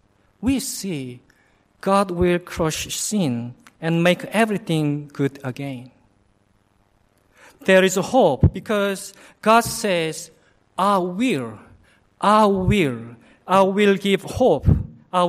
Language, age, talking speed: English, 50-69, 100 wpm